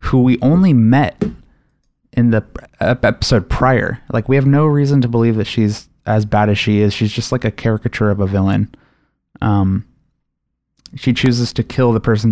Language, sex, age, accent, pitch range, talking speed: English, male, 20-39, American, 110-135 Hz, 180 wpm